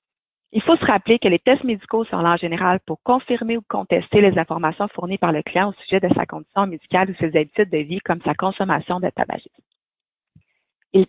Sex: female